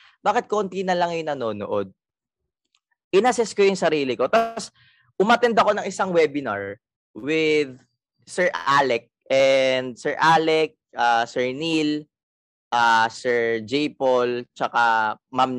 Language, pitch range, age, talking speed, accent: Filipino, 125-175 Hz, 20-39, 125 wpm, native